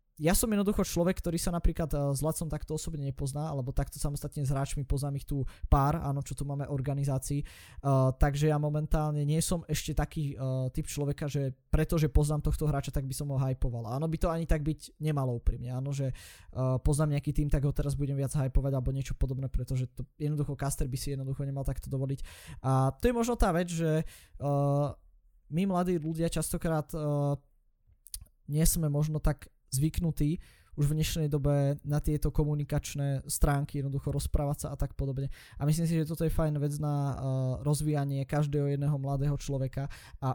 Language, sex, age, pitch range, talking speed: Slovak, male, 20-39, 135-155 Hz, 185 wpm